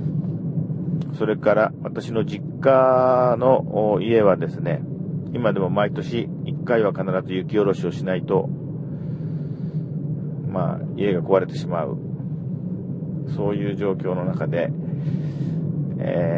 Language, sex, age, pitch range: Japanese, male, 40-59, 145-160 Hz